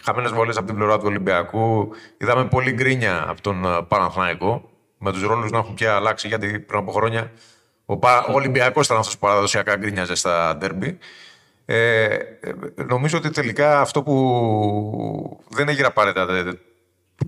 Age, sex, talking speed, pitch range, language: 30-49, male, 155 wpm, 105-135 Hz, Greek